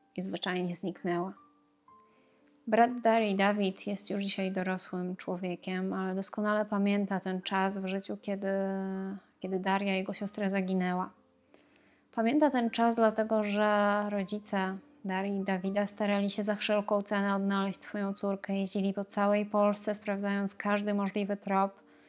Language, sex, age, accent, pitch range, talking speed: Polish, female, 20-39, native, 195-210 Hz, 135 wpm